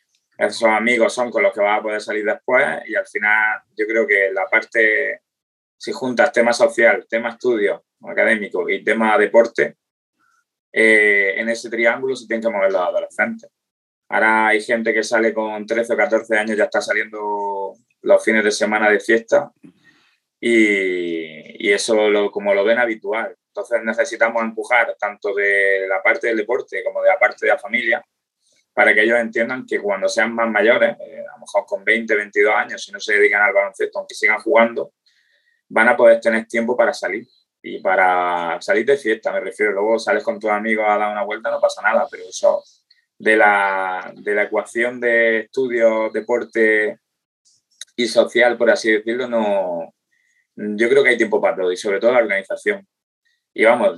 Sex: male